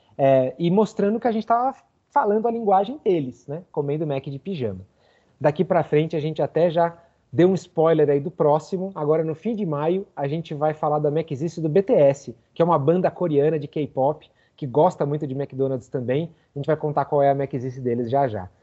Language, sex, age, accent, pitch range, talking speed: Portuguese, male, 30-49, Brazilian, 135-195 Hz, 215 wpm